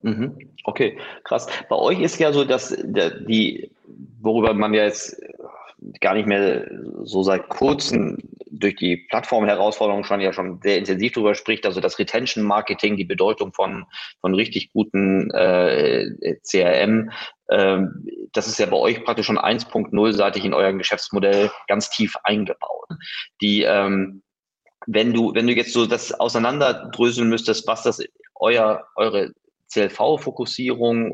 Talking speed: 140 wpm